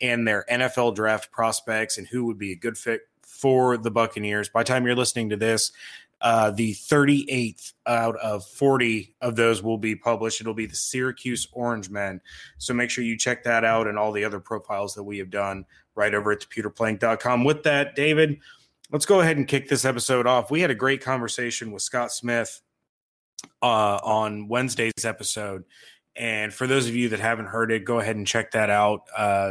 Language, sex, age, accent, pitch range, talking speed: English, male, 20-39, American, 110-125 Hz, 200 wpm